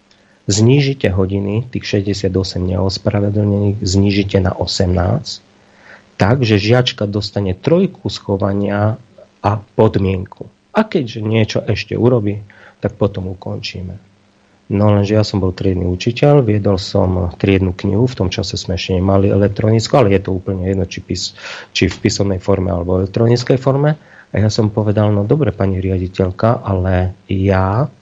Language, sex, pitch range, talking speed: Slovak, male, 100-120 Hz, 140 wpm